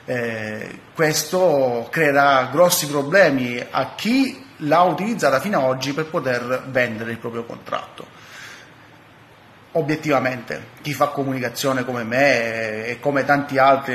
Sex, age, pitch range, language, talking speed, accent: male, 30-49, 120-140 Hz, Italian, 120 wpm, native